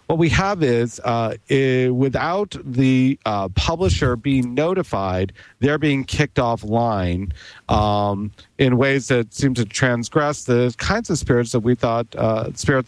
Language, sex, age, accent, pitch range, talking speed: English, male, 50-69, American, 110-135 Hz, 155 wpm